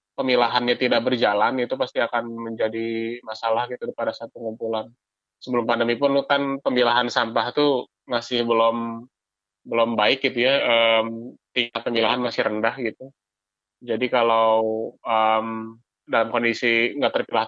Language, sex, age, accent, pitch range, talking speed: Indonesian, male, 20-39, native, 115-125 Hz, 130 wpm